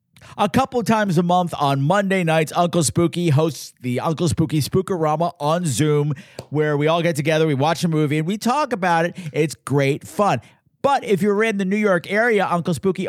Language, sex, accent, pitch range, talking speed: English, male, American, 140-190 Hz, 200 wpm